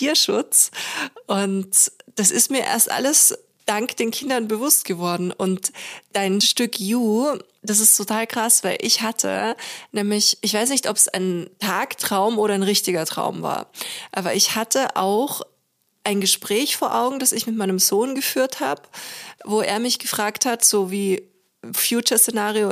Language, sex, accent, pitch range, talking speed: German, female, German, 195-235 Hz, 155 wpm